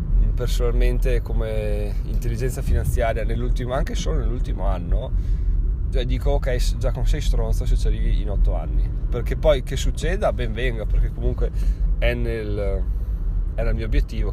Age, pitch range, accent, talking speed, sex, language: 20-39, 90-115 Hz, native, 145 wpm, male, Italian